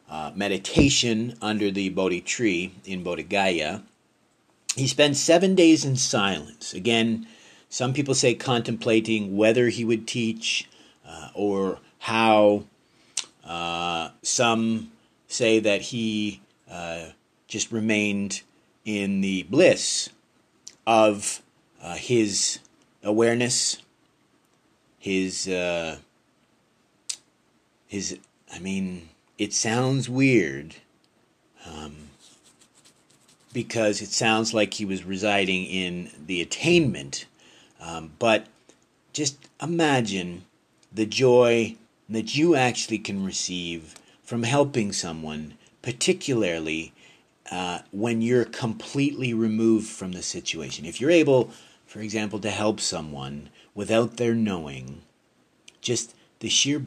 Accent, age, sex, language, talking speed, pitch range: American, 40-59, male, English, 100 wpm, 95-115 Hz